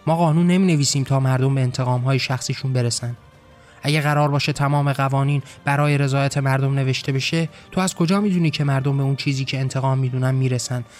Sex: male